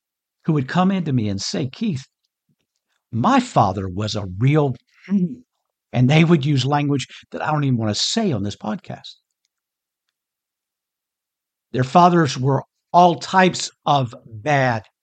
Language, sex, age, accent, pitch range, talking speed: English, male, 60-79, American, 125-175 Hz, 145 wpm